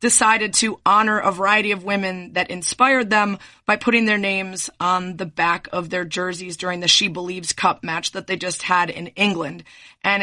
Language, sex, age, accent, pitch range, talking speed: English, female, 30-49, American, 185-220 Hz, 195 wpm